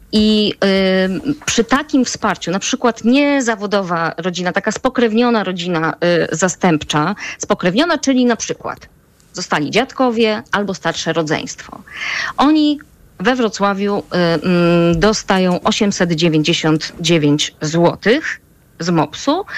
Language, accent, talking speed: Polish, native, 100 wpm